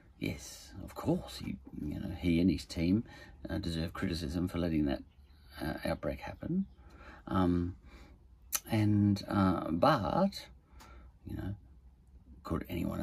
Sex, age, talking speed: male, 50-69, 125 wpm